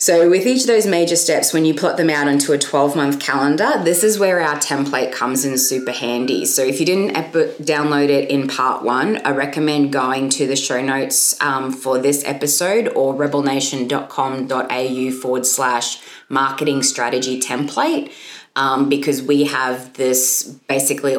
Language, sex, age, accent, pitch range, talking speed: English, female, 20-39, Australian, 130-155 Hz, 165 wpm